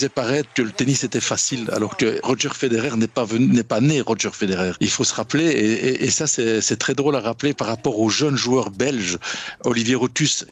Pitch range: 115-135 Hz